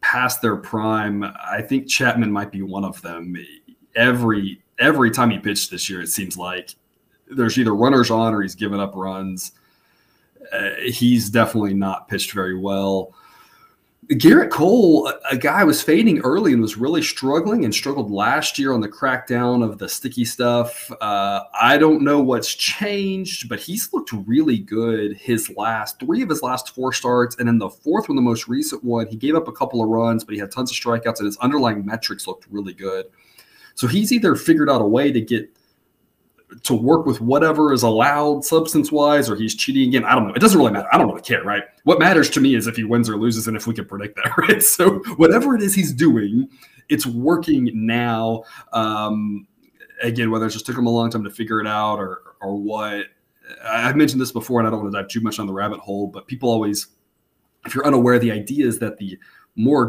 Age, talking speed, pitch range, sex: 30-49, 215 wpm, 105-130 Hz, male